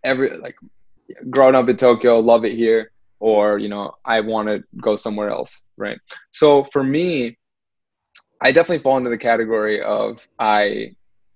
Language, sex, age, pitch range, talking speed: English, male, 10-29, 110-130 Hz, 160 wpm